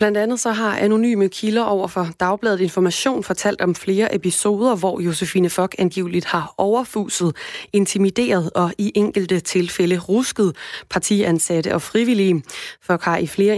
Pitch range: 175-210 Hz